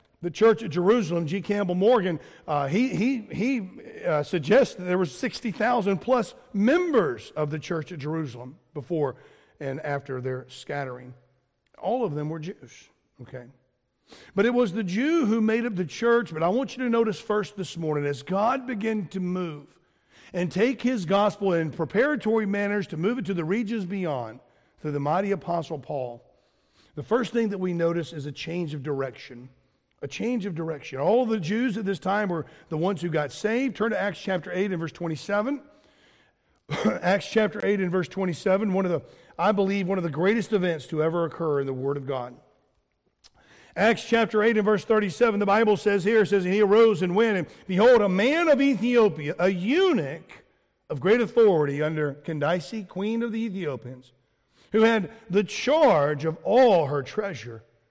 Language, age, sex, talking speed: English, 50-69, male, 185 wpm